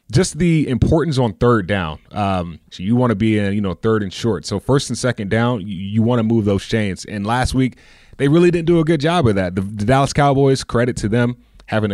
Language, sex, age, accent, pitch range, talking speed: English, male, 20-39, American, 100-125 Hz, 250 wpm